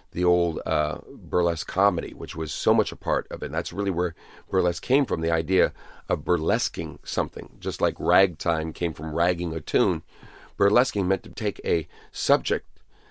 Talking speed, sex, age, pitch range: 180 wpm, male, 40-59, 80-95 Hz